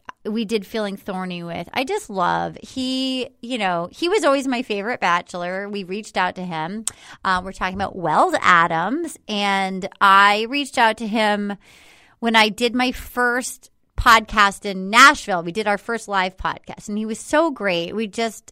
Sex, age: female, 30-49